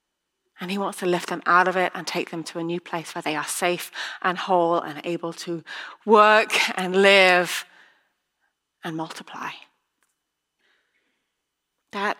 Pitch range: 170-225 Hz